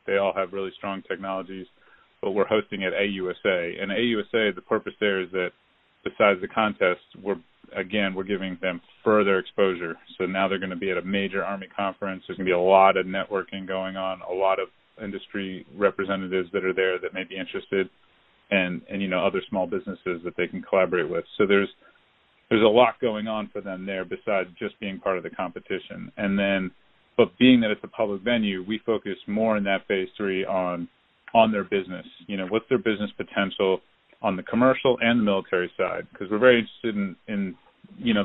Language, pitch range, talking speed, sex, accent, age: English, 95-105 Hz, 205 wpm, male, American, 30-49